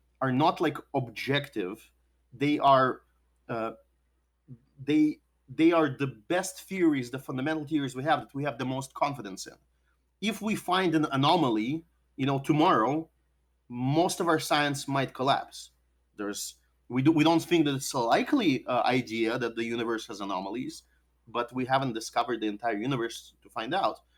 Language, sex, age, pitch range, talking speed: English, male, 30-49, 115-160 Hz, 160 wpm